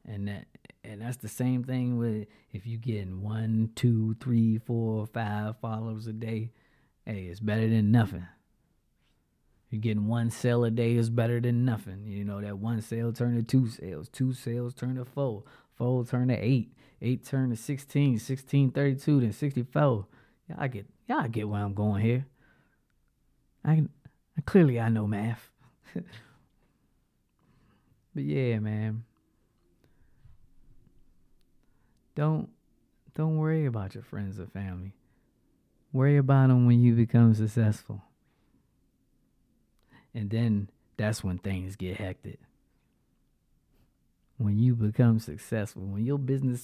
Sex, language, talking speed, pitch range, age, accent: male, English, 140 wpm, 105-125 Hz, 20-39, American